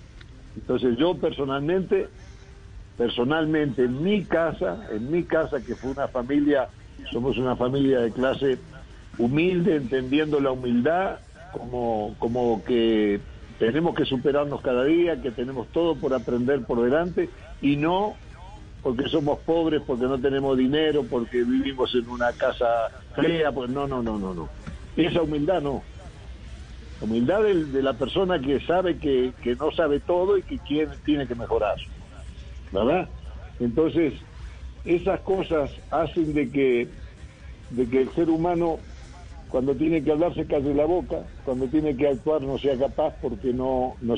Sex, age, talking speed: male, 60-79, 150 wpm